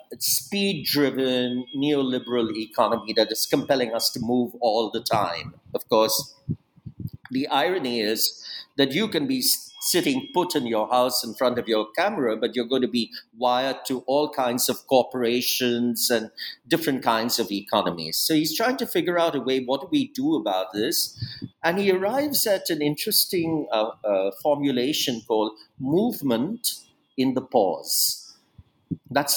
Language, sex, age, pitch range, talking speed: English, male, 50-69, 115-180 Hz, 155 wpm